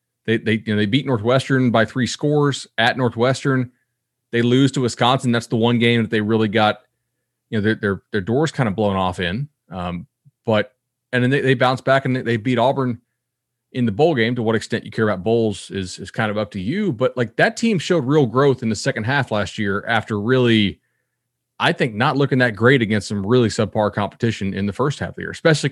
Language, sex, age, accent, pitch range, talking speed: English, male, 30-49, American, 105-130 Hz, 230 wpm